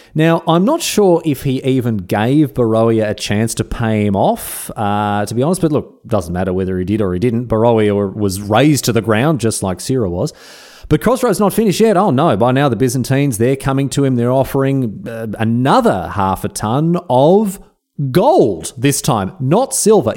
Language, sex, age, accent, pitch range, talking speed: English, male, 30-49, Australian, 105-160 Hz, 200 wpm